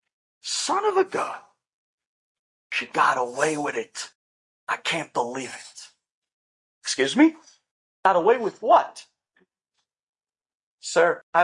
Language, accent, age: English, American, 50-69